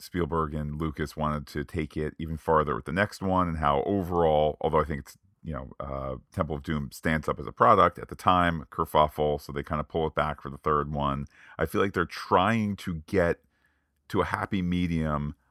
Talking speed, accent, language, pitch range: 220 wpm, American, English, 75-90 Hz